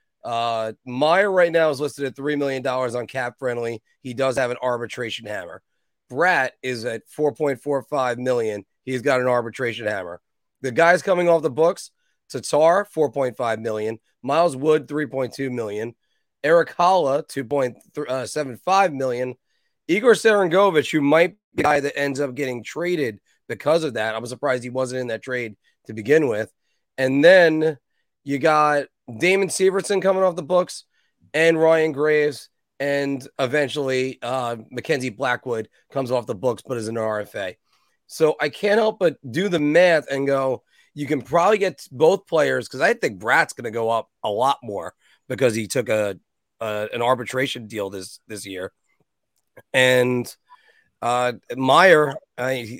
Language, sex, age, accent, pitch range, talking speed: English, male, 30-49, American, 120-160 Hz, 160 wpm